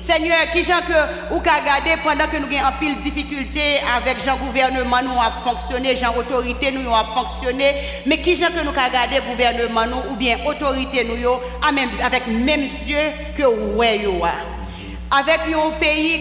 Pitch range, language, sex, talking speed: 240-300 Hz, French, female, 165 wpm